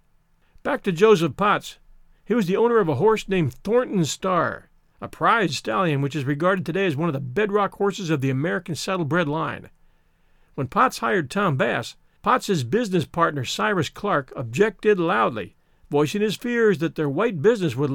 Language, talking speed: English, 175 wpm